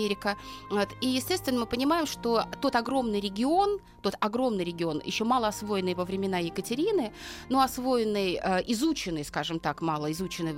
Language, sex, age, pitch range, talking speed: Russian, female, 30-49, 190-250 Hz, 140 wpm